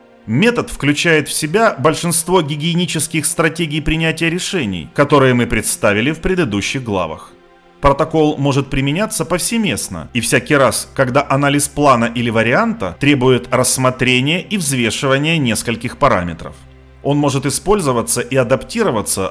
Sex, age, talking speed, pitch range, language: male, 30-49, 120 wpm, 120-170 Hz, Russian